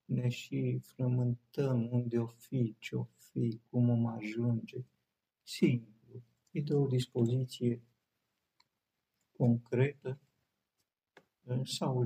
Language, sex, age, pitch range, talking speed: Romanian, male, 50-69, 115-135 Hz, 100 wpm